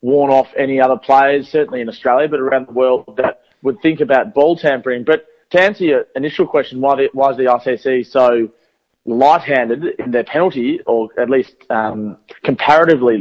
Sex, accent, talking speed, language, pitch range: male, Australian, 175 wpm, English, 125-155 Hz